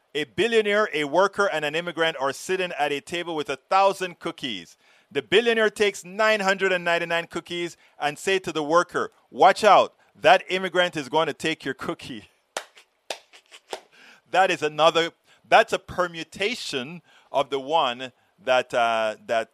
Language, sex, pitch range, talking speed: English, male, 145-190 Hz, 145 wpm